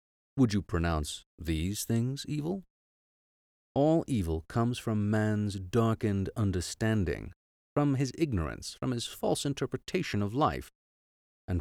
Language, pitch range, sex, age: English, 85-120 Hz, male, 40-59